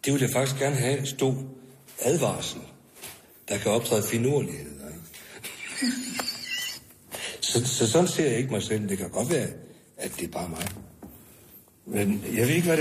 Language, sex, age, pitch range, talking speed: Danish, male, 60-79, 105-145 Hz, 165 wpm